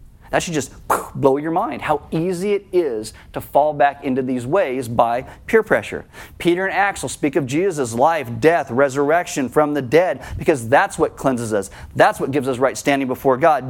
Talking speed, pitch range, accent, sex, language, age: 195 wpm, 150-195 Hz, American, male, English, 30-49